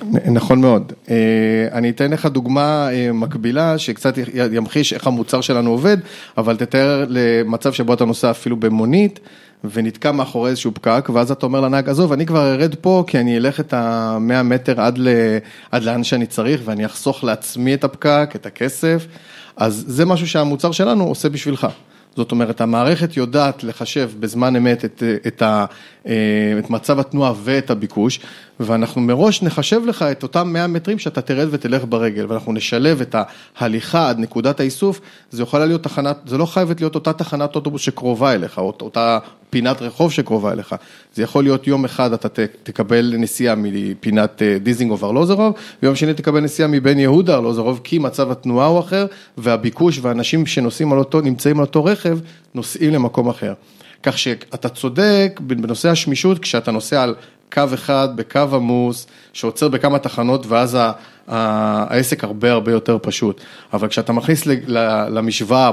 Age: 30-49